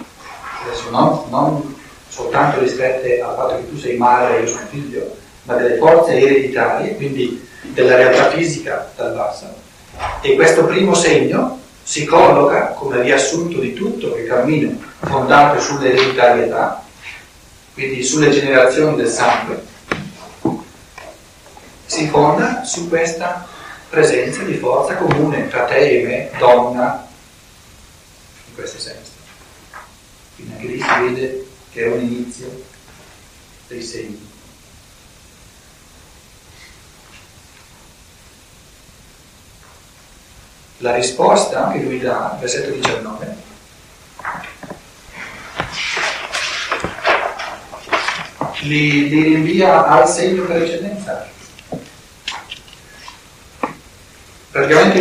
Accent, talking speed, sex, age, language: native, 90 wpm, male, 40-59, Italian